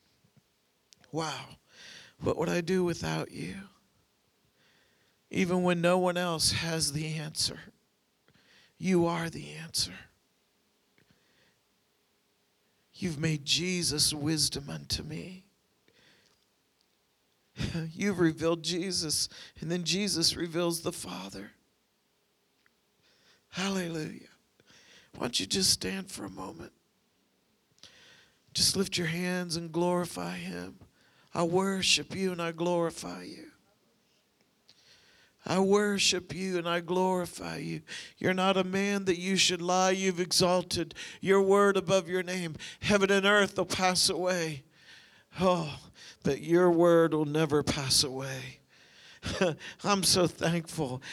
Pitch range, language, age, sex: 150-185 Hz, English, 50-69, male